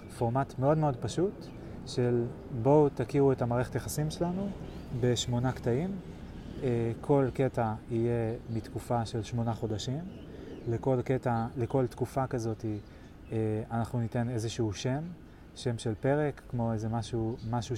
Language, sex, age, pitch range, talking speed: Hebrew, male, 20-39, 110-125 Hz, 120 wpm